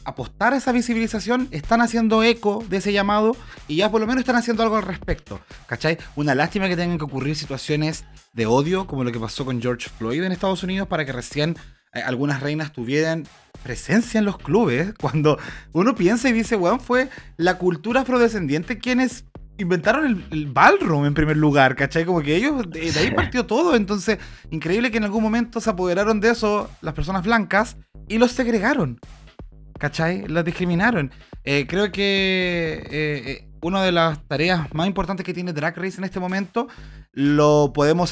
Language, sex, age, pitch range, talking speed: Spanish, male, 20-39, 145-205 Hz, 185 wpm